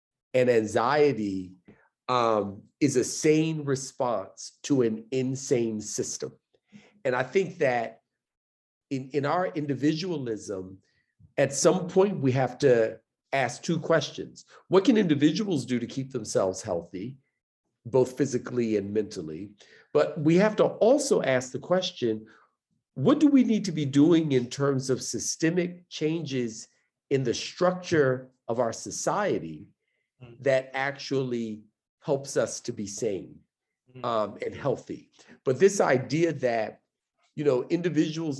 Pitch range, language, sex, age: 115-155 Hz, English, male, 50-69